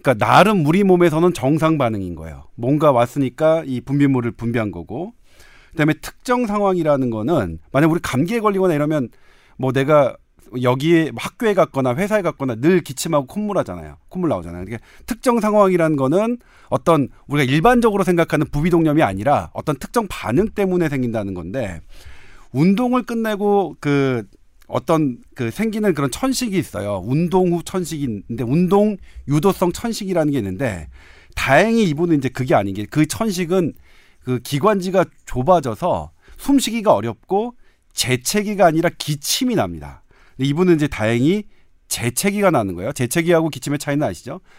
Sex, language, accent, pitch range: male, Korean, native, 125-190 Hz